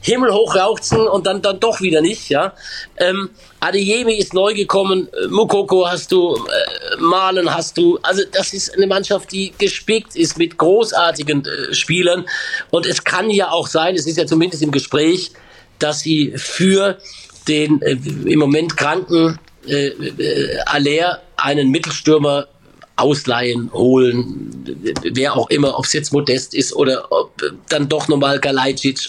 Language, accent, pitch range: German, German, 145-190 Hz